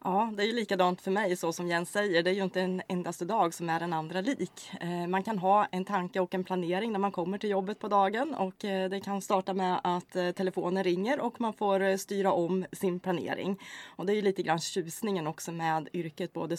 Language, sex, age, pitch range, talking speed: Swedish, female, 20-39, 170-200 Hz, 230 wpm